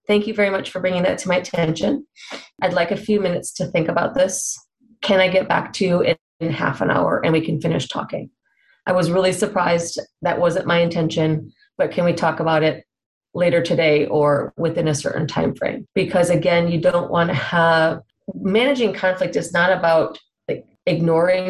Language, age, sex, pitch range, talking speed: English, 30-49, female, 165-195 Hz, 195 wpm